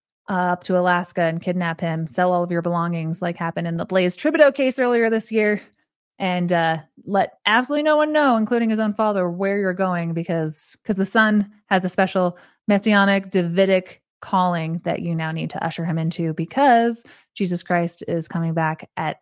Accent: American